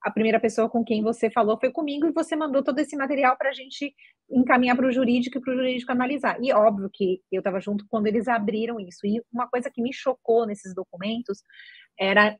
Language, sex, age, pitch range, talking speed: Portuguese, female, 30-49, 210-270 Hz, 225 wpm